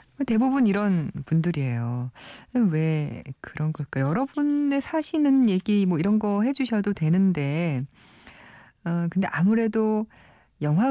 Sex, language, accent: female, Korean, native